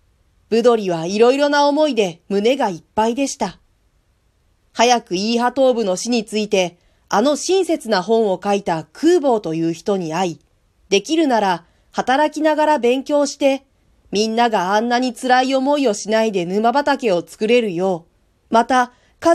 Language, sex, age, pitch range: Japanese, female, 40-59, 190-270 Hz